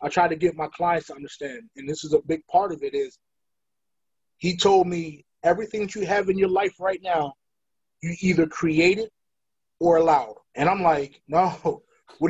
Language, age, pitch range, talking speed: English, 20-39, 170-240 Hz, 190 wpm